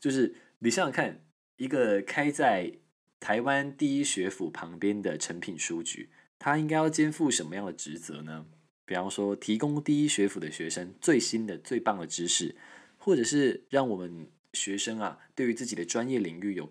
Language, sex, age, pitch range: Chinese, male, 20-39, 95-120 Hz